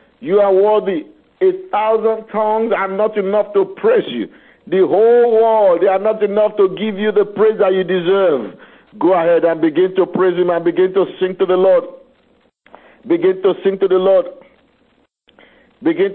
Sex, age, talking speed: male, 60-79, 180 wpm